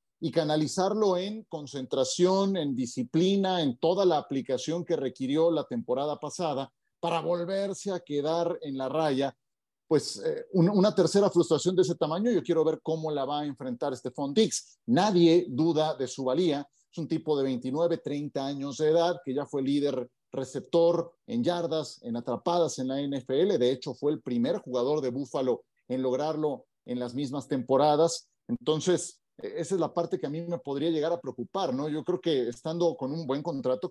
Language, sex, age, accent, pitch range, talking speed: Spanish, male, 40-59, Mexican, 135-175 Hz, 180 wpm